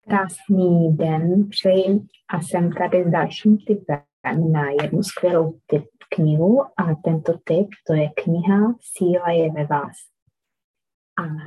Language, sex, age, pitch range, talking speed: Czech, female, 20-39, 175-205 Hz, 125 wpm